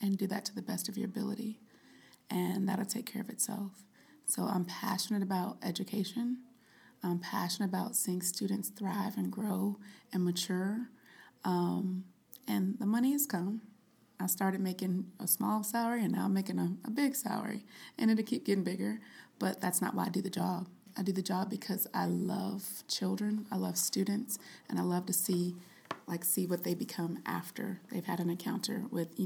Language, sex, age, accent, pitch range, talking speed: English, female, 20-39, American, 185-220 Hz, 185 wpm